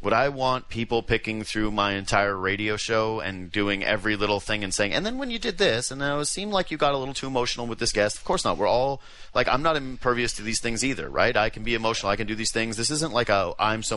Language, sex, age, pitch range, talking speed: English, male, 30-49, 100-120 Hz, 290 wpm